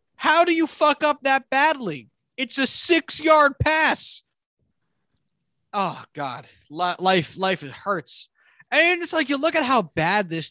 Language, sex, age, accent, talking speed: English, male, 20-39, American, 155 wpm